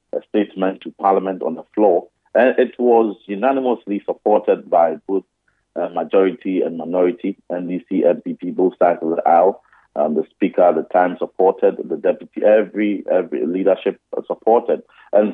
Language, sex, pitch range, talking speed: English, male, 90-110 Hz, 155 wpm